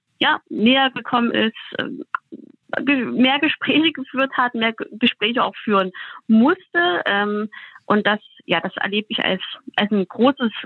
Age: 20-39